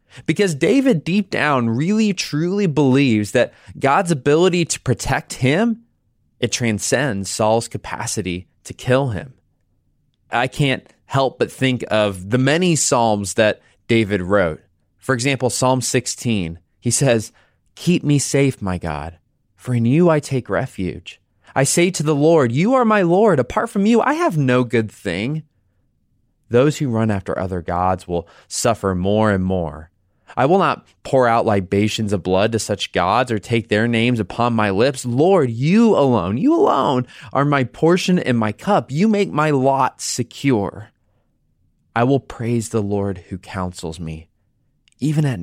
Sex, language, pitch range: male, English, 105-150 Hz